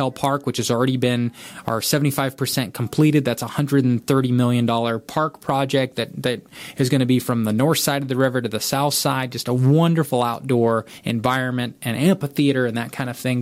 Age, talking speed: 20-39, 190 wpm